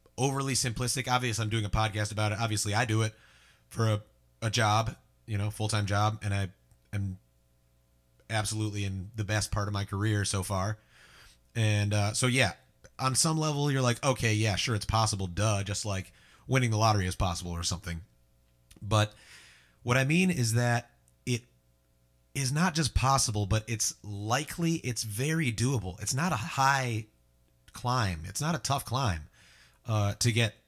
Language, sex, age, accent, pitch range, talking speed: English, male, 30-49, American, 95-125 Hz, 170 wpm